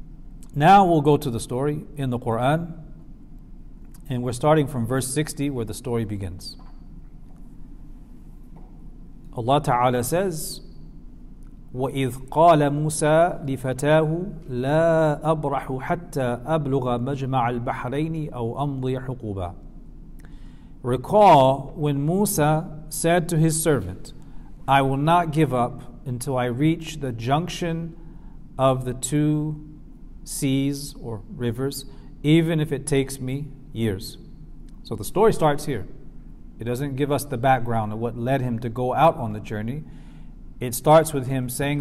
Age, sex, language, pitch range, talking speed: 50-69, male, English, 125-155 Hz, 130 wpm